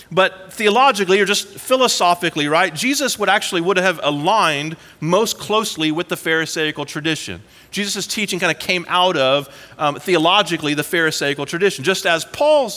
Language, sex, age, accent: English, male, 40-59, American